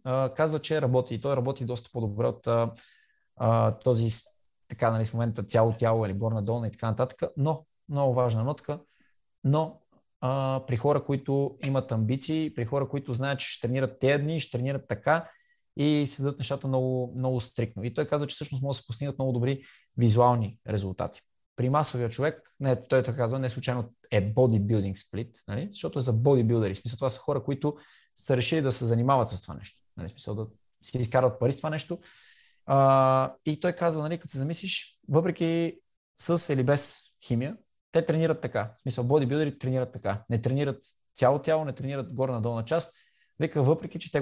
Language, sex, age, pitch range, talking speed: Bulgarian, male, 20-39, 120-150 Hz, 190 wpm